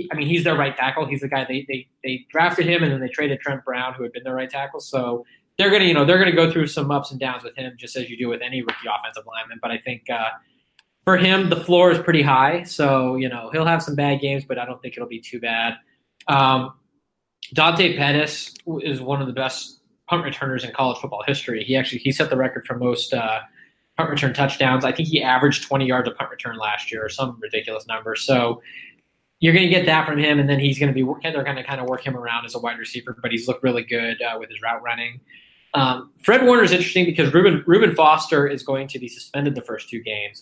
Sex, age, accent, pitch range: male, 20-39, American, 125-150 Hz